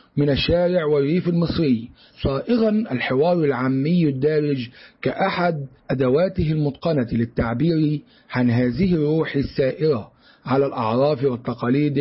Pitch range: 135-170 Hz